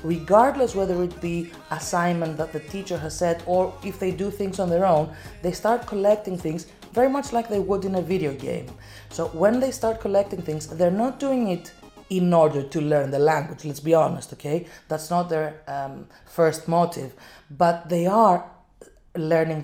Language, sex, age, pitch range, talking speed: Greek, female, 30-49, 155-190 Hz, 185 wpm